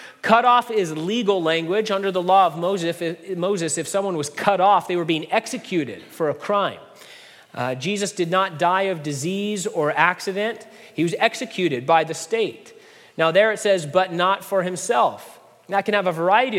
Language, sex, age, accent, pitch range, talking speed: English, male, 30-49, American, 155-200 Hz, 180 wpm